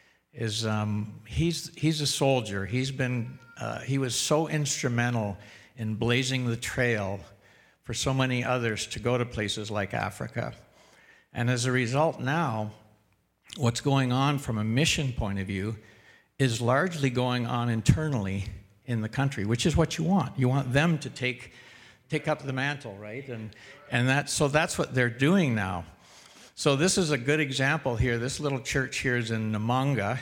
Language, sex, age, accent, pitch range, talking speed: English, male, 60-79, American, 110-135 Hz, 175 wpm